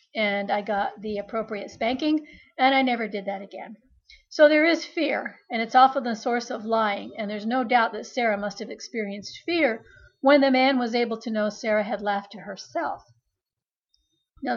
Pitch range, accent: 210-255 Hz, American